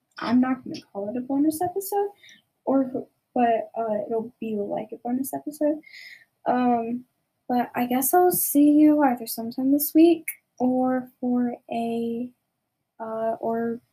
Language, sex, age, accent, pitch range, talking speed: English, female, 10-29, American, 225-305 Hz, 145 wpm